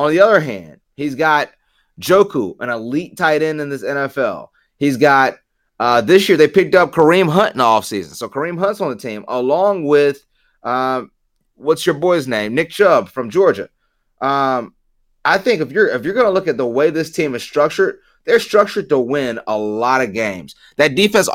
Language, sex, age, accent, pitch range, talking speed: English, male, 30-49, American, 130-165 Hz, 205 wpm